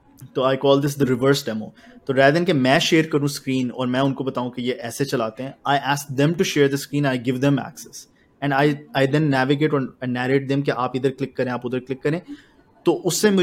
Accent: Indian